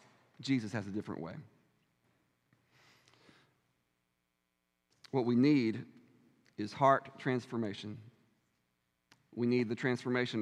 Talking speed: 85 wpm